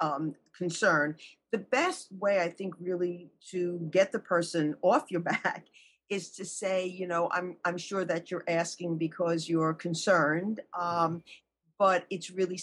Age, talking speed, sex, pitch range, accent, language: 50-69, 155 wpm, female, 175-220 Hz, American, English